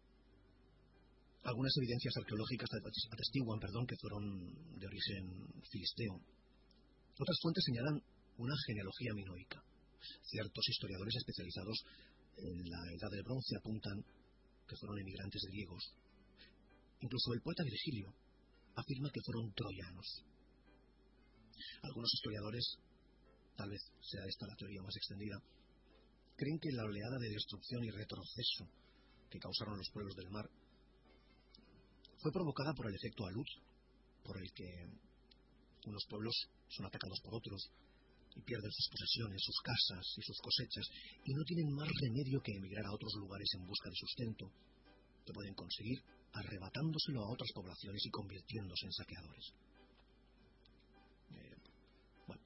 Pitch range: 100-120 Hz